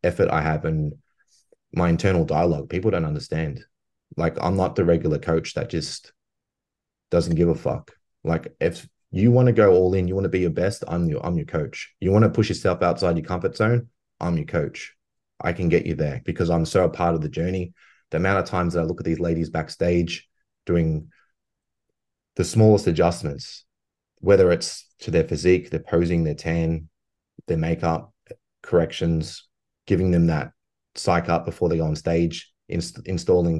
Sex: male